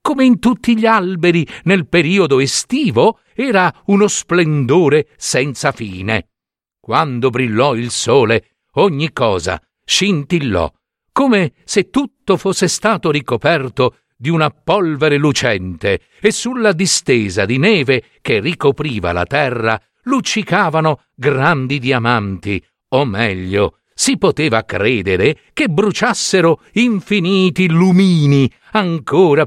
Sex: male